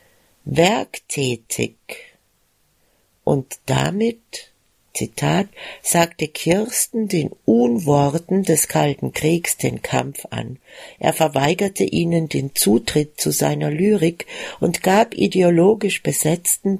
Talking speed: 95 wpm